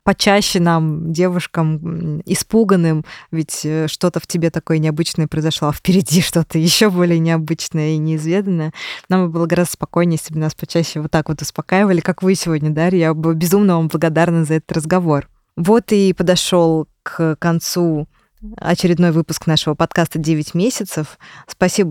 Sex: female